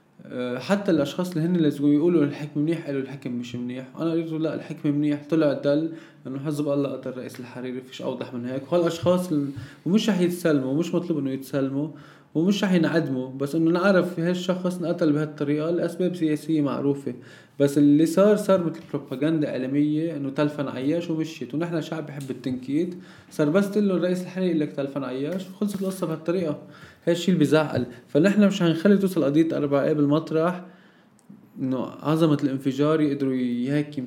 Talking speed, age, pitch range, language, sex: 155 wpm, 20-39, 135-165 Hz, English, male